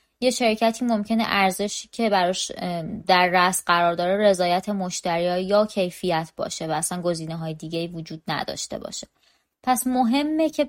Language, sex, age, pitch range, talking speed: Persian, female, 20-39, 180-230 Hz, 140 wpm